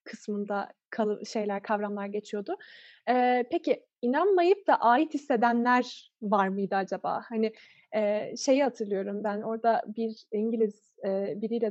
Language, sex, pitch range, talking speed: Turkish, female, 225-290 Hz, 125 wpm